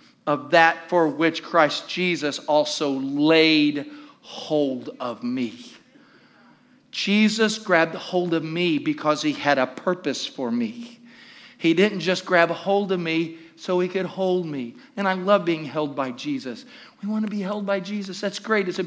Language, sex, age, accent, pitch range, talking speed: English, male, 50-69, American, 180-240 Hz, 170 wpm